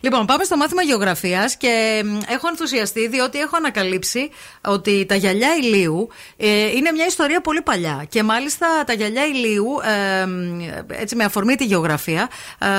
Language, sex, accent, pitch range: Greek, female, native, 195-275 Hz